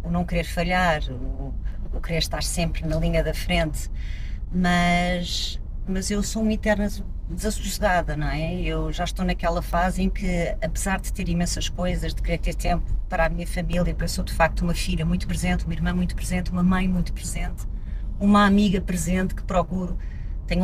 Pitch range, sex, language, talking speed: 165-210 Hz, female, Portuguese, 185 wpm